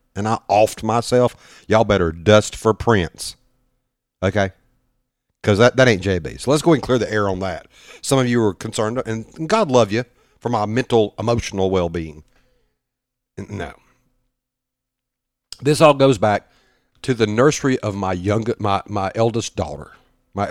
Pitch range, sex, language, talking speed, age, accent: 95-130 Hz, male, English, 165 wpm, 50-69, American